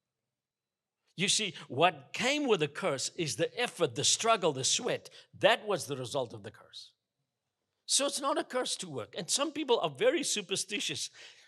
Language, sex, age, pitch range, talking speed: English, male, 60-79, 135-190 Hz, 180 wpm